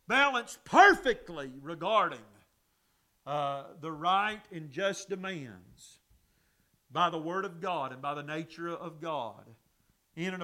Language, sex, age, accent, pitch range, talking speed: English, male, 40-59, American, 170-240 Hz, 125 wpm